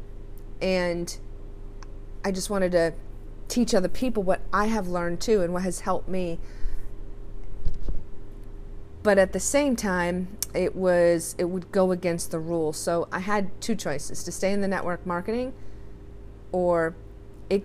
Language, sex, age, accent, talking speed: English, female, 30-49, American, 150 wpm